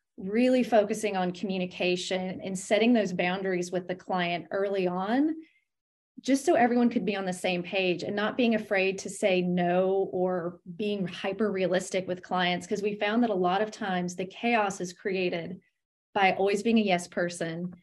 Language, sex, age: English, female, 30-49